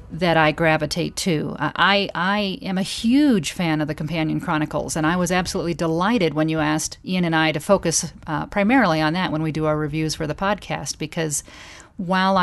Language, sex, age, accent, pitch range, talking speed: English, female, 40-59, American, 155-180 Hz, 200 wpm